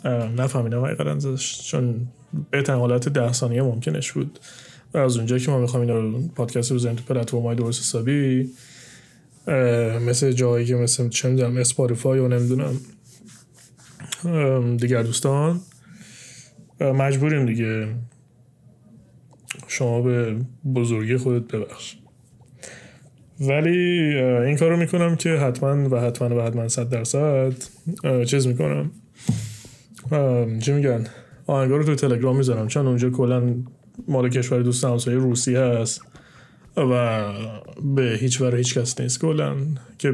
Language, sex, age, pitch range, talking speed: Persian, male, 20-39, 120-135 Hz, 125 wpm